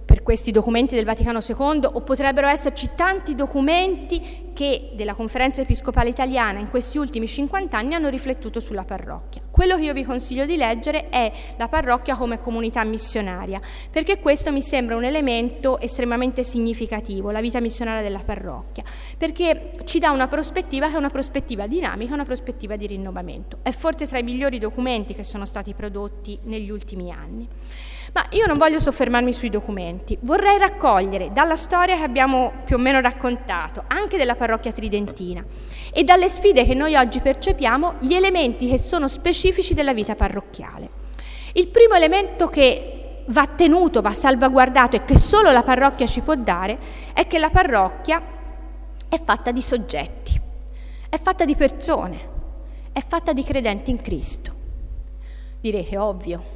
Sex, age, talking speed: female, 30-49, 160 wpm